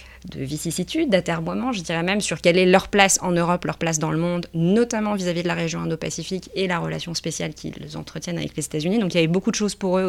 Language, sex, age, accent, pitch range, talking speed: French, female, 20-39, French, 155-185 Hz, 255 wpm